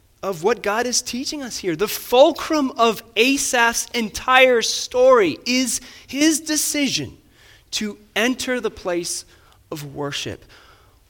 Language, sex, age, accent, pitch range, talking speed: English, male, 30-49, American, 115-195 Hz, 120 wpm